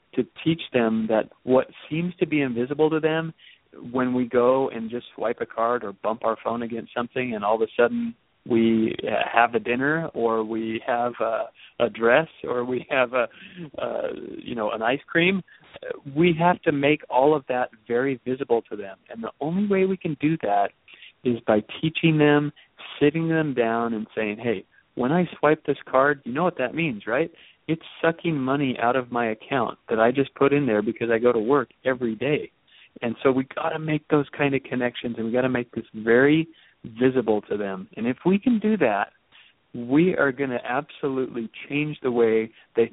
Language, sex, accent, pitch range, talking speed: English, male, American, 115-150 Hz, 205 wpm